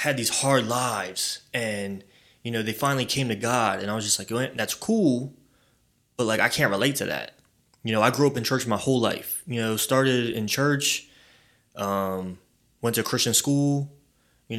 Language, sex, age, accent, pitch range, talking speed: English, male, 20-39, American, 110-145 Hz, 195 wpm